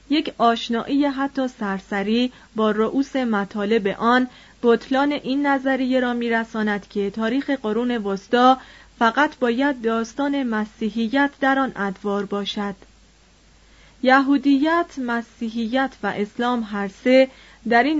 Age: 30-49